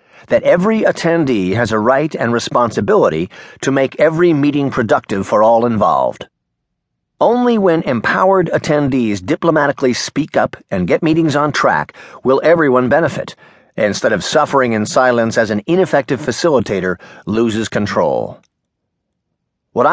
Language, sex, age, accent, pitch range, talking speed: English, male, 50-69, American, 120-170 Hz, 130 wpm